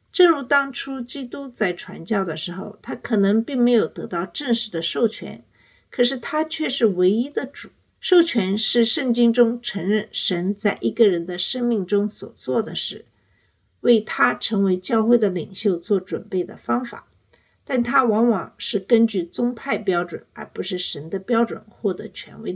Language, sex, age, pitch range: Chinese, female, 50-69, 190-245 Hz